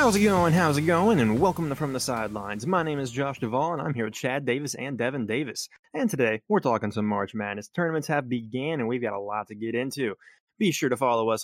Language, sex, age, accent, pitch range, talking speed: English, male, 20-39, American, 110-155 Hz, 255 wpm